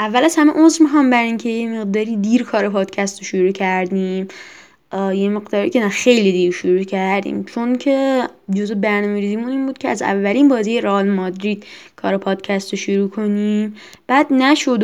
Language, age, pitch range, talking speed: Persian, 10-29, 200-250 Hz, 170 wpm